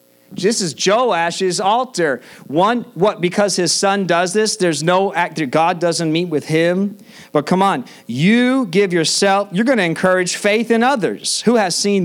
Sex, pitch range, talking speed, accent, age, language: male, 130-185 Hz, 175 wpm, American, 40-59, English